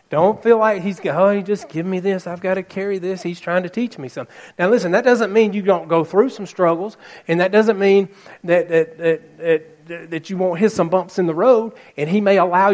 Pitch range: 160-215 Hz